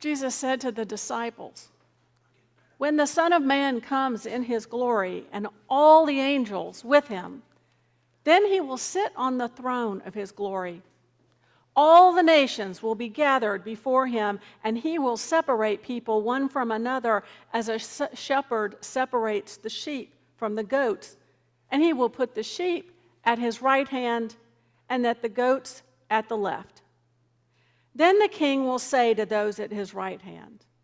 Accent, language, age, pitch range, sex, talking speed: American, English, 50-69, 205-265 Hz, female, 160 wpm